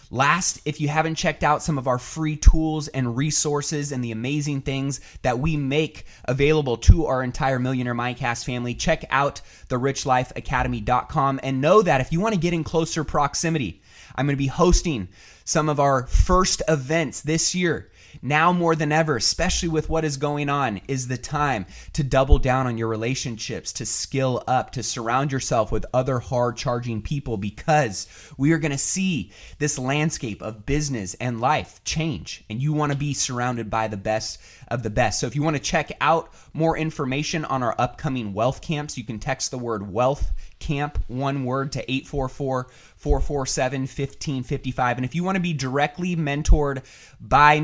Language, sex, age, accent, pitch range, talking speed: English, male, 20-39, American, 120-150 Hz, 180 wpm